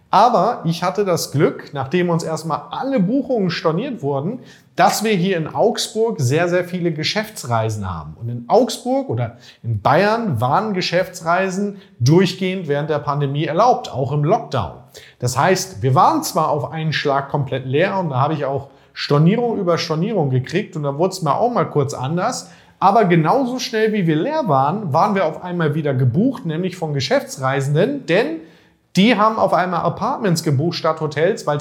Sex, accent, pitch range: male, German, 140-195 Hz